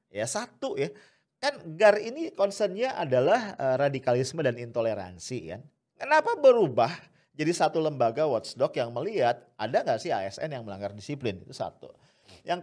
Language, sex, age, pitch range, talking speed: English, male, 40-59, 130-205 Hz, 145 wpm